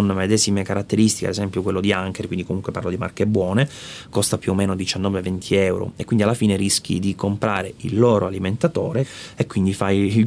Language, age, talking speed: Italian, 30-49, 195 wpm